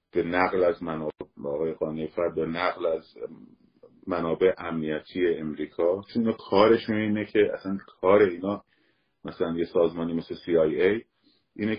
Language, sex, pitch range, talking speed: Persian, male, 85-125 Hz, 120 wpm